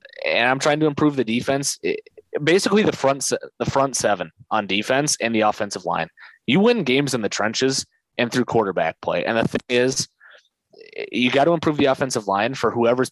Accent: American